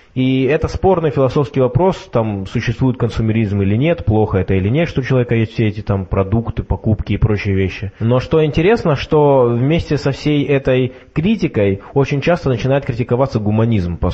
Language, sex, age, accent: Russian, male, 20-39, native